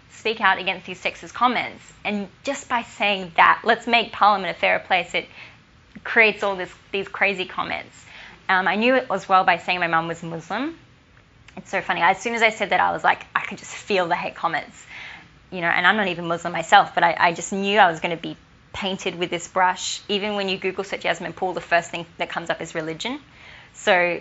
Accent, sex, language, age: Australian, female, English, 20-39